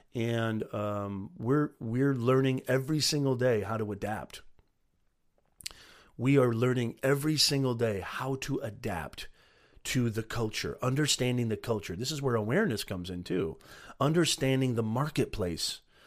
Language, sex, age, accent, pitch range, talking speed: English, male, 40-59, American, 115-165 Hz, 135 wpm